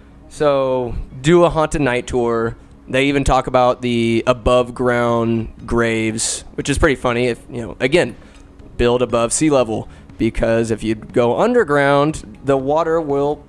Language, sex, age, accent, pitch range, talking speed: English, male, 20-39, American, 120-145 Hz, 150 wpm